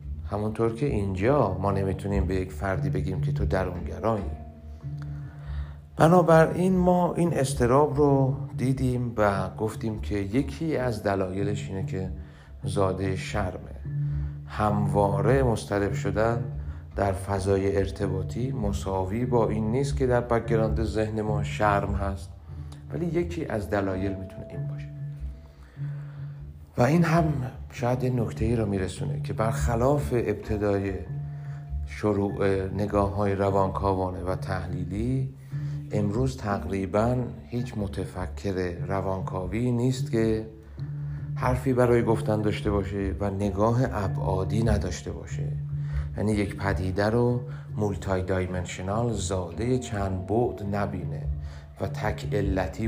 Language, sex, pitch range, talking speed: Persian, male, 85-125 Hz, 110 wpm